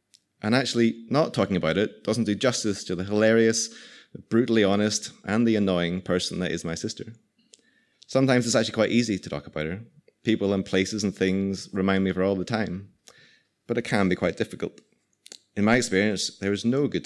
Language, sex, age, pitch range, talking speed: English, male, 30-49, 95-115 Hz, 195 wpm